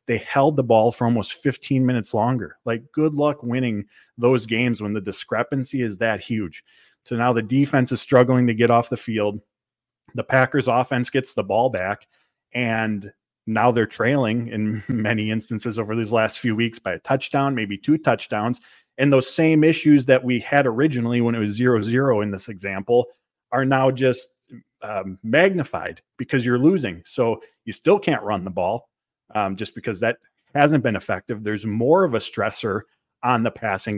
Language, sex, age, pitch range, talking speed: English, male, 30-49, 110-130 Hz, 180 wpm